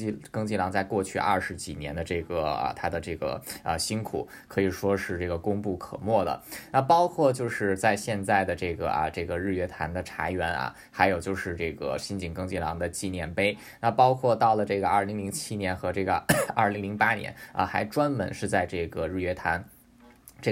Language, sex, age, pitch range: Chinese, male, 20-39, 90-110 Hz